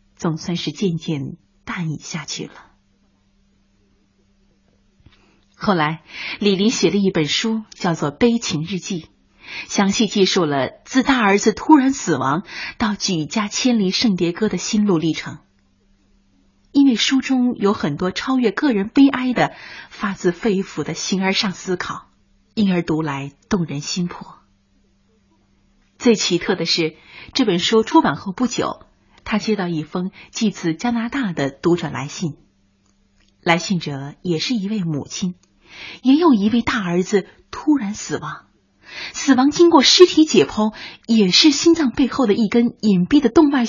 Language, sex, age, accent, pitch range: Chinese, female, 30-49, native, 155-235 Hz